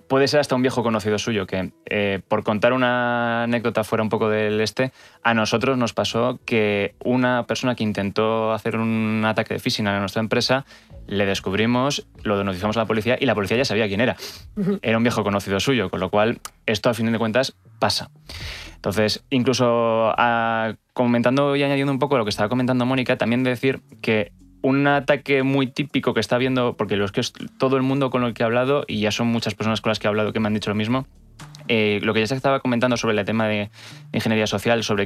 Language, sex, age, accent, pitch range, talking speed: Spanish, male, 20-39, Spanish, 105-130 Hz, 220 wpm